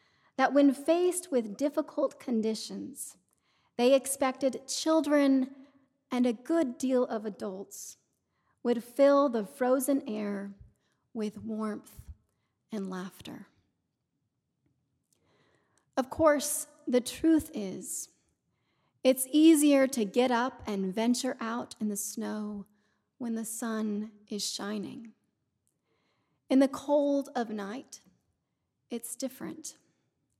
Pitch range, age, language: 215-275 Hz, 40-59, English